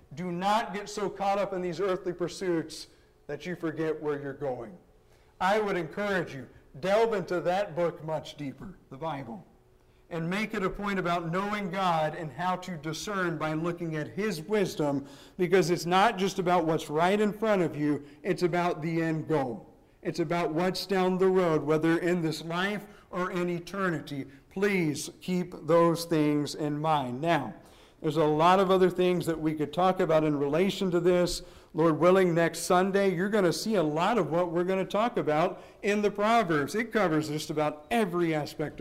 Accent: American